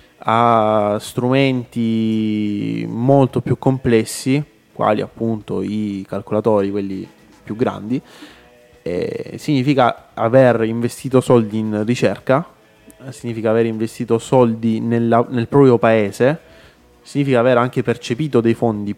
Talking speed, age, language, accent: 100 wpm, 20-39, Italian, native